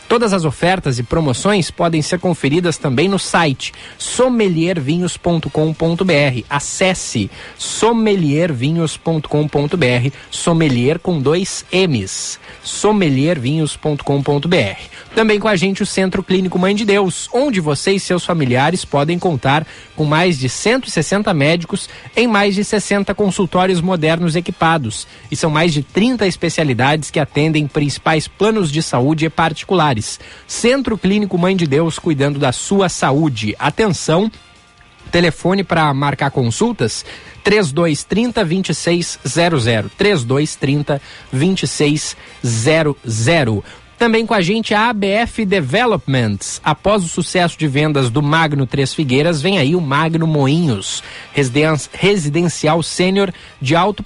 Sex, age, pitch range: male, 20-39, 145-190 Hz